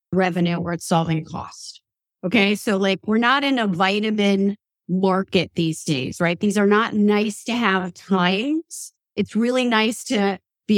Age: 40-59